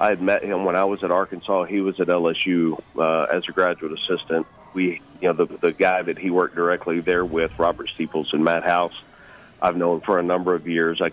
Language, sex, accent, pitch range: English, male, American, 85-90 Hz